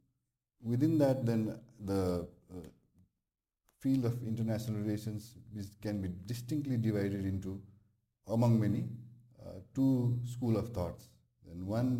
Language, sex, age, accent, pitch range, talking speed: English, male, 50-69, Indian, 90-115 Hz, 120 wpm